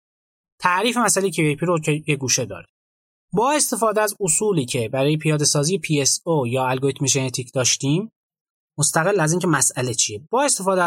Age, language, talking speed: 30-49, Persian, 155 wpm